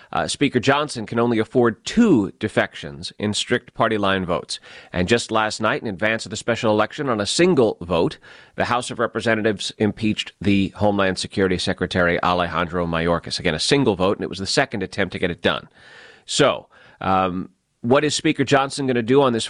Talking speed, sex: 195 wpm, male